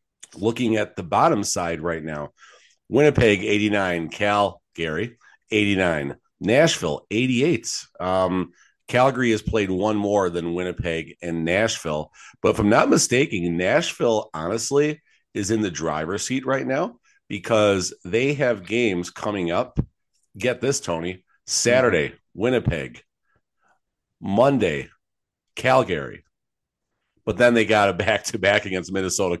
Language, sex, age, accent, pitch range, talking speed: English, male, 50-69, American, 90-115 Hz, 120 wpm